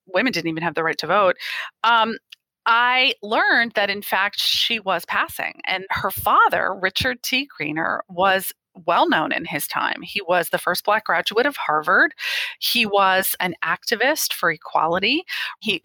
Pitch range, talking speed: 175-235 Hz, 165 wpm